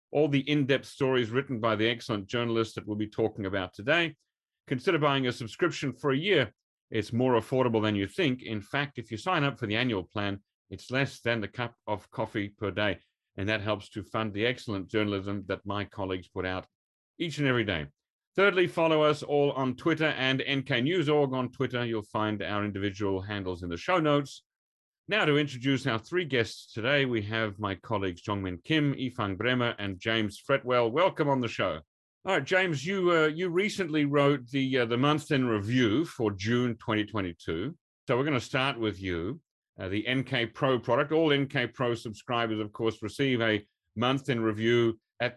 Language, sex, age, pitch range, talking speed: English, male, 40-59, 105-140 Hz, 195 wpm